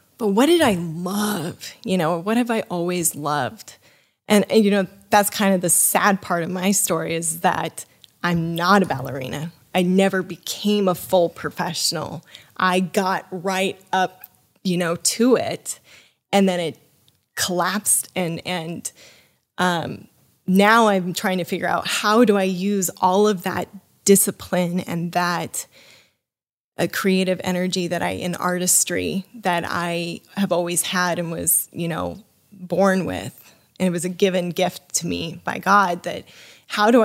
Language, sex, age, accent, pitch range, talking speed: English, female, 10-29, American, 180-205 Hz, 160 wpm